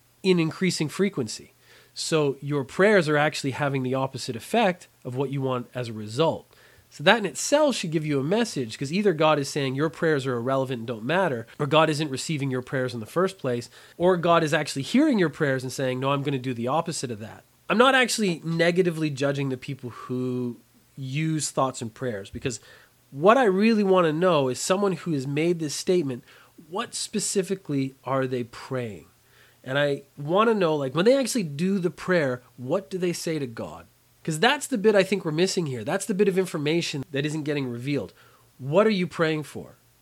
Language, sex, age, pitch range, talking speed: English, male, 30-49, 130-185 Hz, 210 wpm